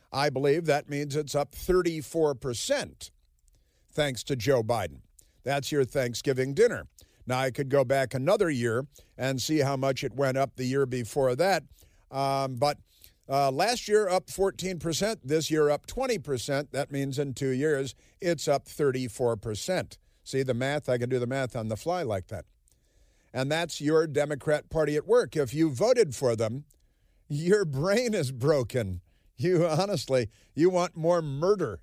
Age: 50-69